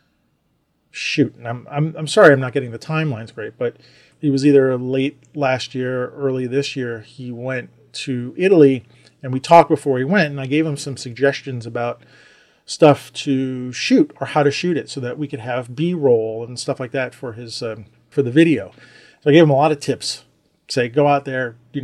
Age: 40-59